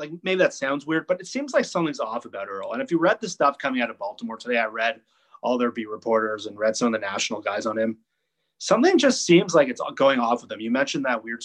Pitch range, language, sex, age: 120-170 Hz, English, male, 30-49